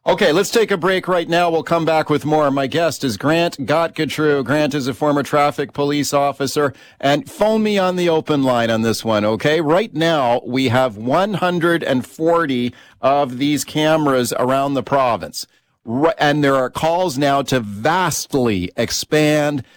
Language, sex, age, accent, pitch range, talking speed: English, male, 40-59, American, 125-160 Hz, 165 wpm